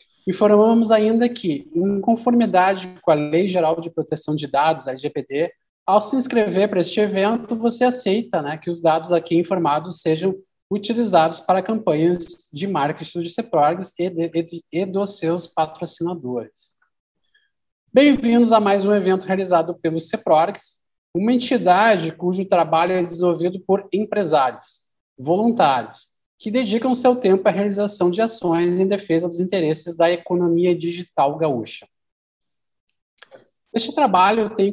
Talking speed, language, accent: 140 wpm, Portuguese, Brazilian